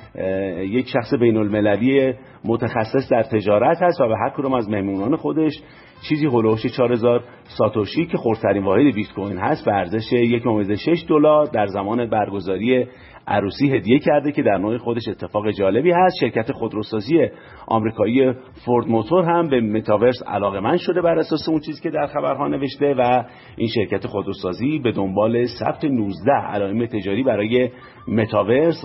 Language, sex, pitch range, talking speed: Persian, male, 105-140 Hz, 150 wpm